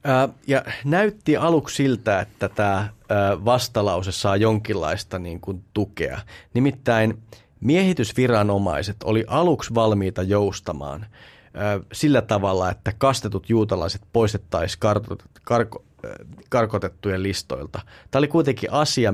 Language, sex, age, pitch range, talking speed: Finnish, male, 30-49, 95-120 Hz, 95 wpm